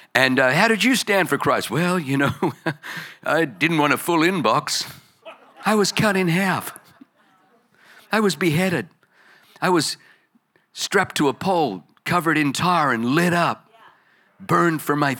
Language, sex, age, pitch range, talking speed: English, male, 50-69, 135-185 Hz, 160 wpm